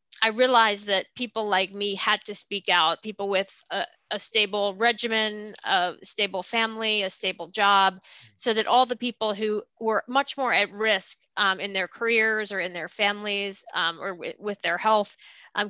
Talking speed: 180 wpm